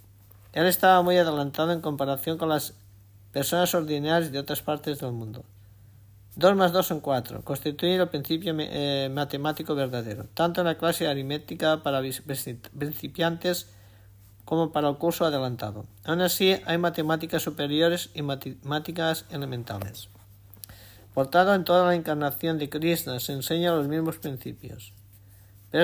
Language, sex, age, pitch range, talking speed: Spanish, male, 50-69, 115-165 Hz, 135 wpm